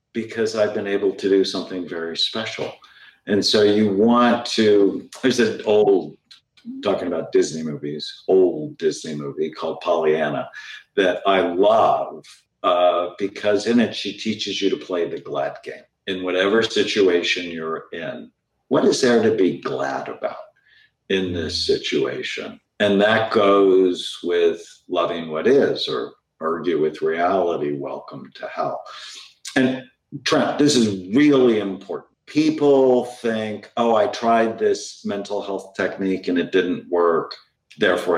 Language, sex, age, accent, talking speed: English, male, 50-69, American, 140 wpm